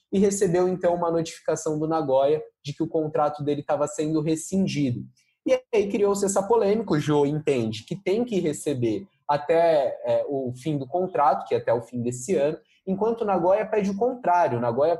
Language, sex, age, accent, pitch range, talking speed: Portuguese, male, 20-39, Brazilian, 140-185 Hz, 190 wpm